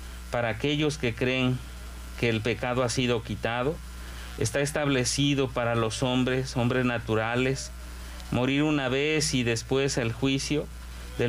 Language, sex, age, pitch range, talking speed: Spanish, male, 40-59, 115-150 Hz, 135 wpm